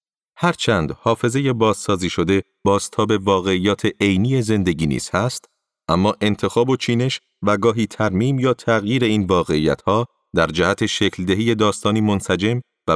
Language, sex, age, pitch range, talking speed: Persian, male, 40-59, 100-120 Hz, 145 wpm